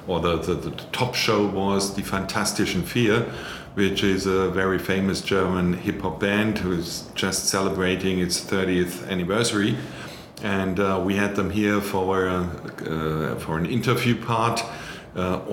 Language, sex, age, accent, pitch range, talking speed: English, male, 50-69, German, 90-100 Hz, 150 wpm